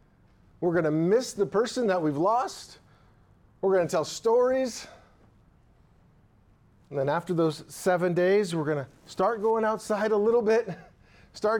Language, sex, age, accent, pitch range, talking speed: English, male, 40-59, American, 150-215 Hz, 155 wpm